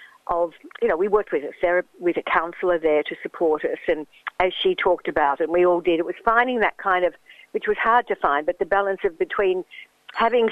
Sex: female